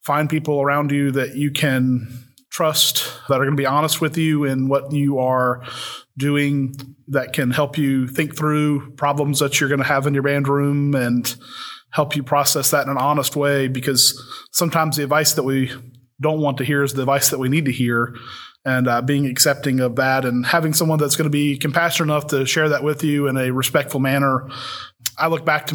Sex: male